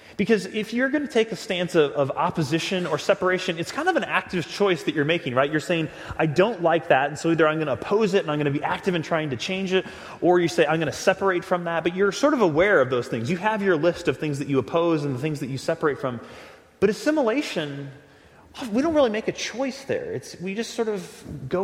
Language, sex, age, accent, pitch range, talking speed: English, male, 30-49, American, 150-195 Hz, 265 wpm